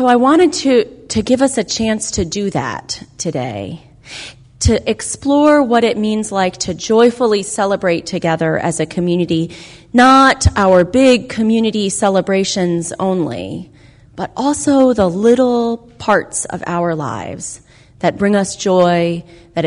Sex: female